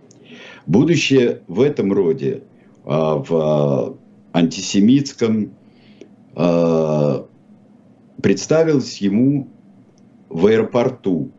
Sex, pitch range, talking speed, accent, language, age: male, 85-135 Hz, 55 wpm, native, Russian, 50-69